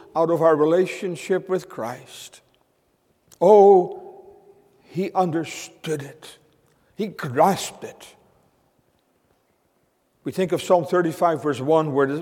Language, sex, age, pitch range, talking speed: English, male, 60-79, 145-190 Hz, 105 wpm